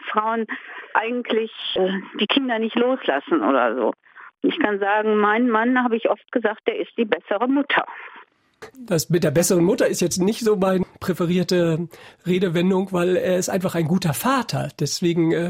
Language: German